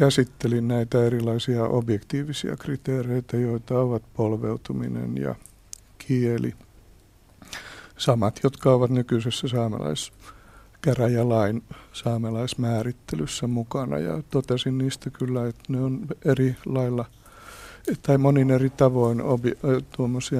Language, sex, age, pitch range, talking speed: Finnish, male, 60-79, 115-130 Hz, 95 wpm